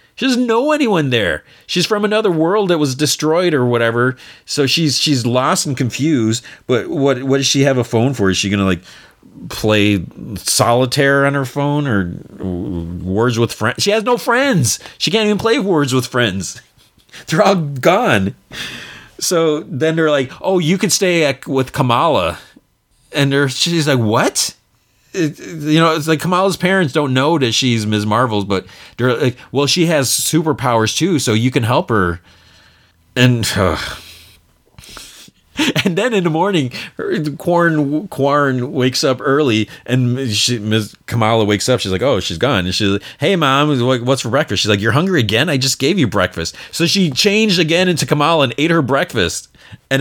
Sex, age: male, 40-59